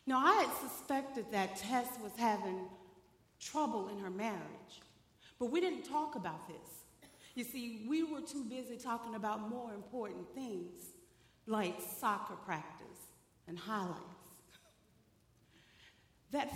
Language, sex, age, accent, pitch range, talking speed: English, female, 40-59, American, 210-290 Hz, 125 wpm